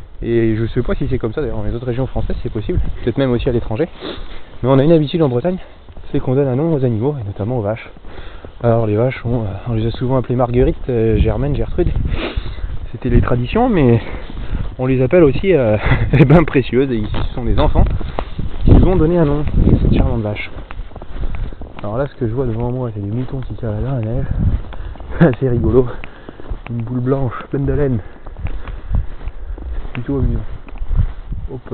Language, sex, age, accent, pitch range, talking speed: French, male, 20-39, French, 90-130 Hz, 205 wpm